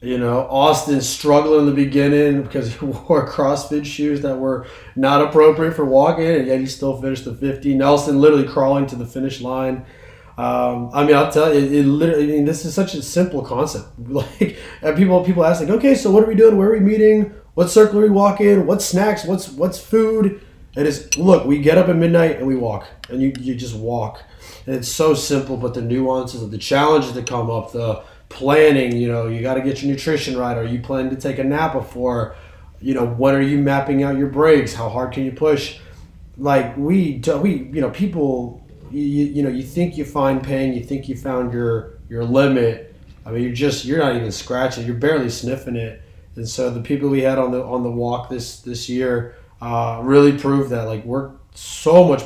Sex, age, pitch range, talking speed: male, 20-39, 120-150 Hz, 220 wpm